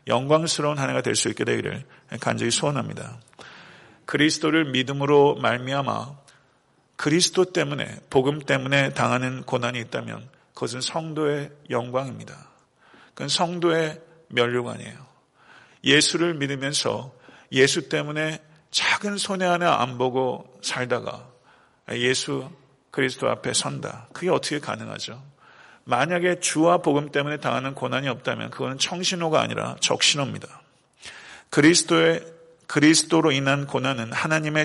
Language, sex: Korean, male